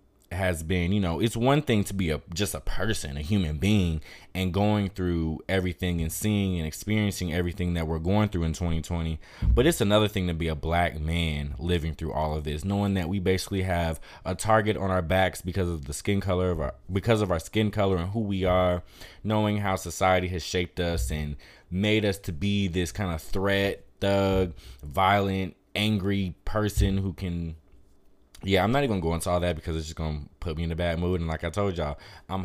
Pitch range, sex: 85-100 Hz, male